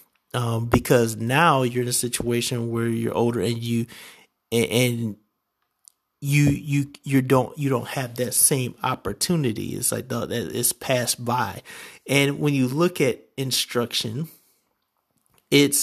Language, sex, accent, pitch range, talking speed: English, male, American, 115-140 Hz, 135 wpm